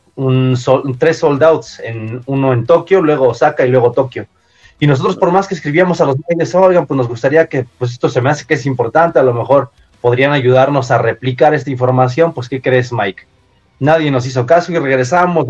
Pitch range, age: 125-155 Hz, 30-49